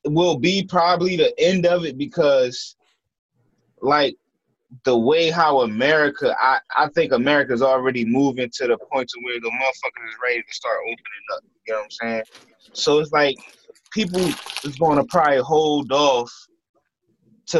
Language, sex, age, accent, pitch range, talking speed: English, male, 20-39, American, 130-190 Hz, 165 wpm